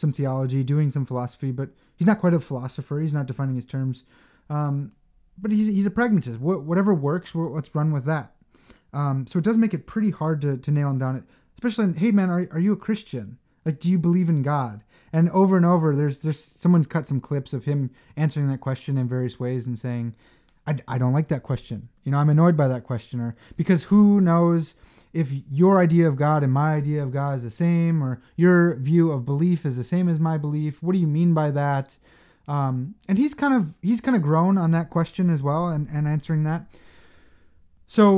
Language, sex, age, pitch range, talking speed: English, male, 30-49, 135-170 Hz, 225 wpm